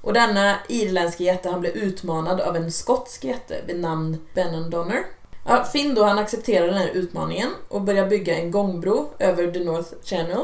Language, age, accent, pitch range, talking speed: Swedish, 20-39, Norwegian, 170-225 Hz, 165 wpm